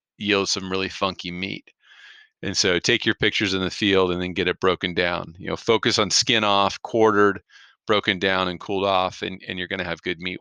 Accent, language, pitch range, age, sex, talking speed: American, English, 95-105 Hz, 40-59, male, 225 wpm